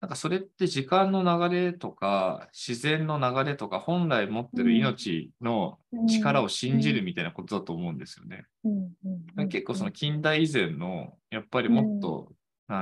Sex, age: male, 20-39